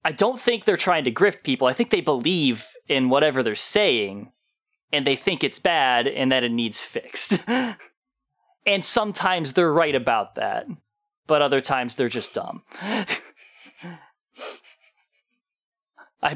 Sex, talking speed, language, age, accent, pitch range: male, 145 wpm, English, 20-39, American, 125-190 Hz